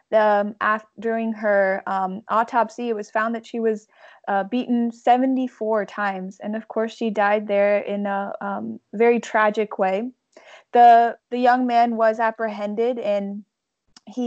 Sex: female